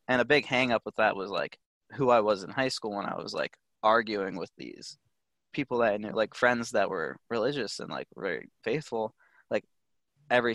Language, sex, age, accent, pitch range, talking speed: English, male, 20-39, American, 110-130 Hz, 205 wpm